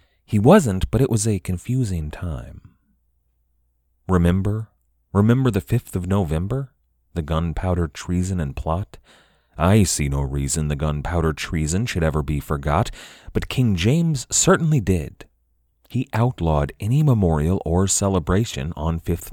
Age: 30-49